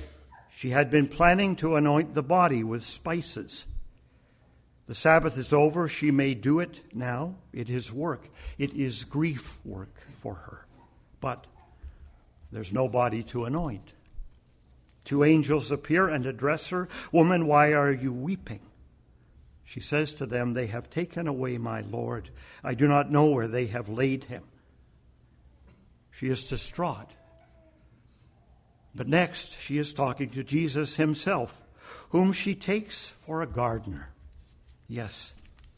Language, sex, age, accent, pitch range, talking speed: English, male, 60-79, American, 110-160 Hz, 140 wpm